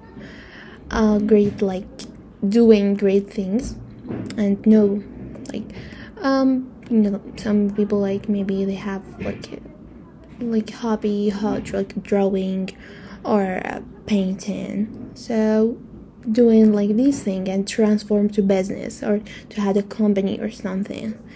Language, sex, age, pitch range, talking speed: English, female, 10-29, 200-230 Hz, 120 wpm